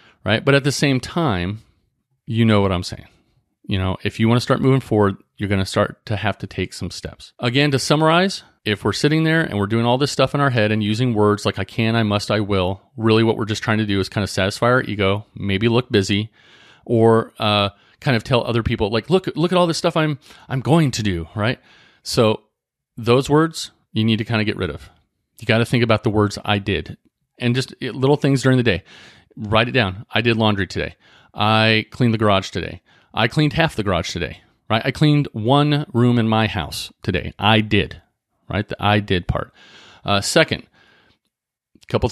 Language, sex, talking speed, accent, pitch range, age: English, male, 225 wpm, American, 100-130 Hz, 40-59